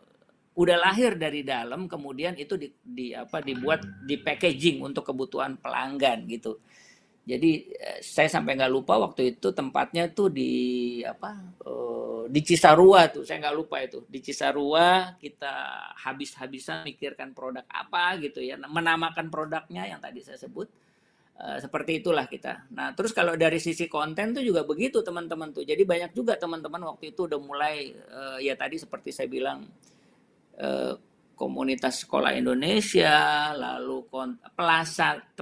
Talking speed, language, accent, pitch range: 140 wpm, Indonesian, native, 135-190 Hz